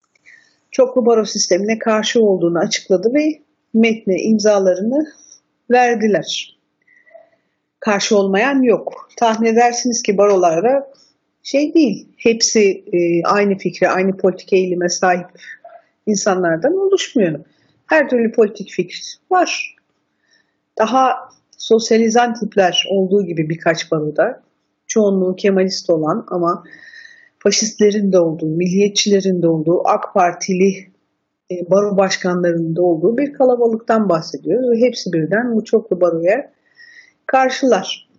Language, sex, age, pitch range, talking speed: Turkish, female, 50-69, 180-255 Hz, 105 wpm